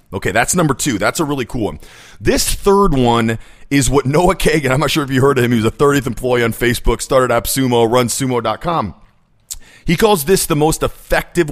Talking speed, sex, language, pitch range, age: 215 wpm, male, English, 125-205 Hz, 40-59